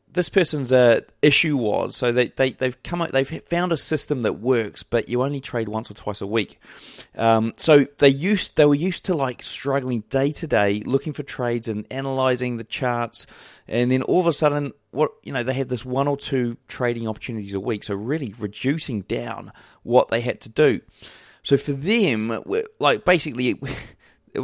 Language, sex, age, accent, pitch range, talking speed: English, male, 30-49, British, 115-145 Hz, 195 wpm